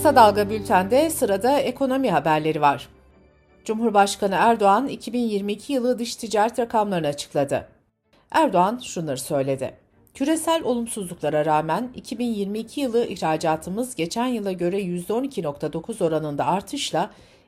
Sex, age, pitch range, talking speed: female, 60-79, 170-250 Hz, 105 wpm